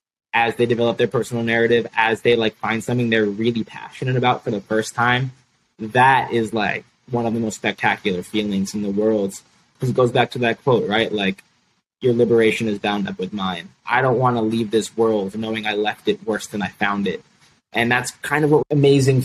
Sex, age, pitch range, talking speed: male, 20-39, 105-120 Hz, 210 wpm